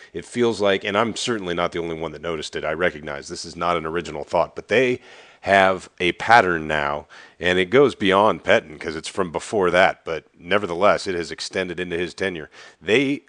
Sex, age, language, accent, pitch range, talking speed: male, 40-59, English, American, 85-100 Hz, 210 wpm